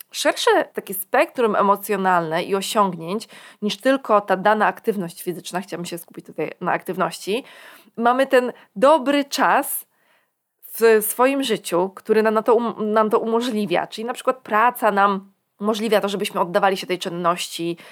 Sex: female